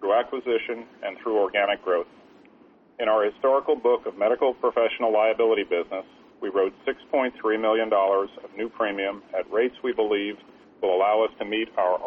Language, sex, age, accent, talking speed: English, male, 40-59, American, 160 wpm